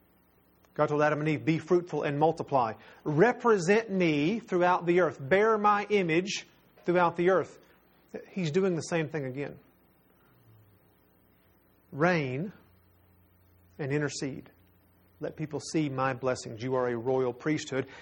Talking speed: 130 wpm